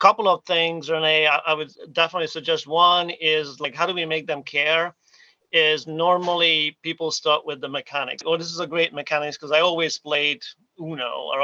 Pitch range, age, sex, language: 145-170 Hz, 40-59, male, English